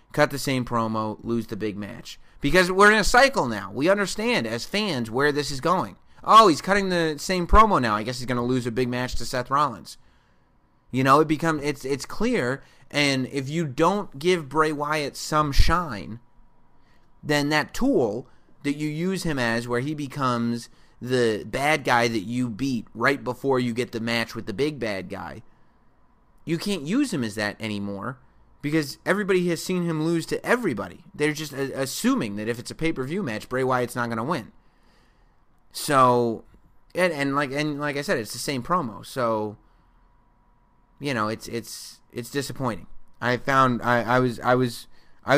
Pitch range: 115-150 Hz